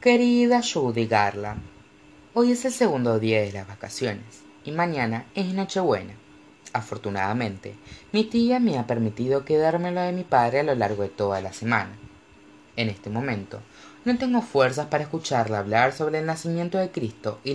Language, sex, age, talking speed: Spanish, female, 20-39, 160 wpm